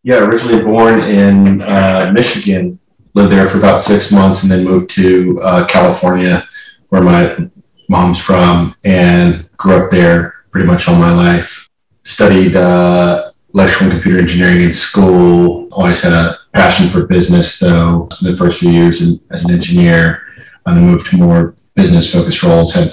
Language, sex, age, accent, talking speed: English, male, 30-49, American, 160 wpm